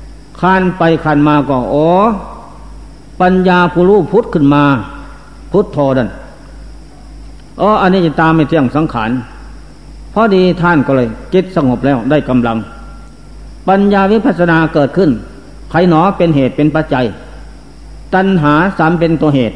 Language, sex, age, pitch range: Thai, male, 60-79, 140-175 Hz